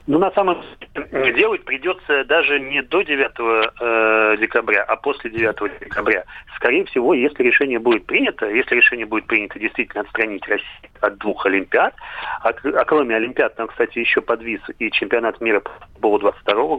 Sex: male